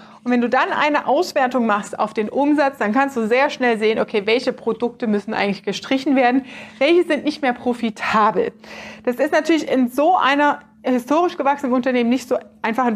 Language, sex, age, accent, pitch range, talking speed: German, female, 30-49, German, 225-285 Hz, 190 wpm